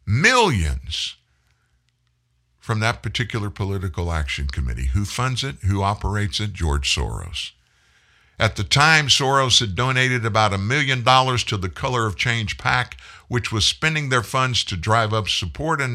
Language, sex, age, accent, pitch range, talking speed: English, male, 60-79, American, 90-125 Hz, 155 wpm